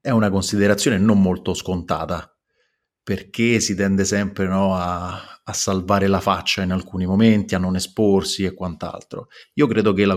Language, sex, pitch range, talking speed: Italian, male, 90-105 Hz, 165 wpm